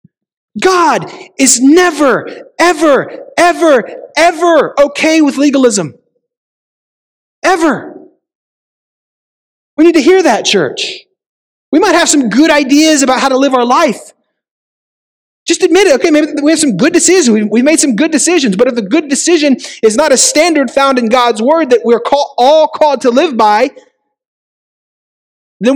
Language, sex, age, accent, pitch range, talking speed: English, male, 30-49, American, 240-335 Hz, 150 wpm